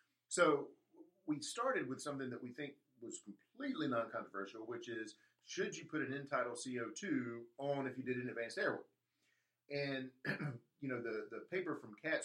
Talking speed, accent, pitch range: 170 wpm, American, 120-150 Hz